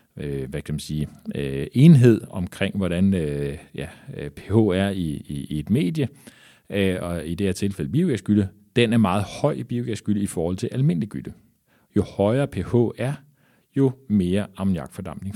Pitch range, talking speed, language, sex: 80-115 Hz, 165 wpm, Danish, male